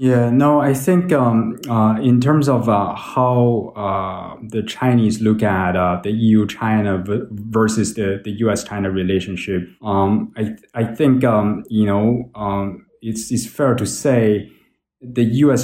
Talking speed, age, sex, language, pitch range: 175 wpm, 20-39, male, English, 95-120 Hz